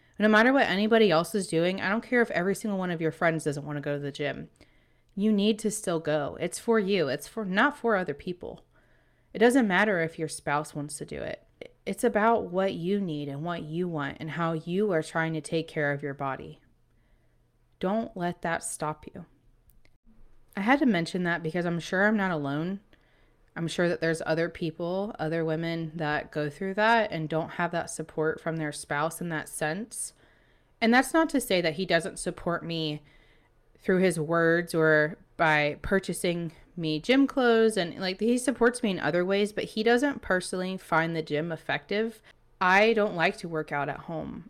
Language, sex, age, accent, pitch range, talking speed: English, female, 20-39, American, 155-200 Hz, 200 wpm